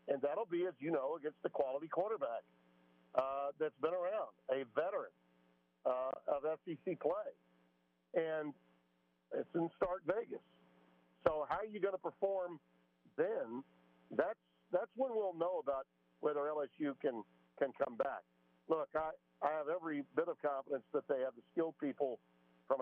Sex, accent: male, American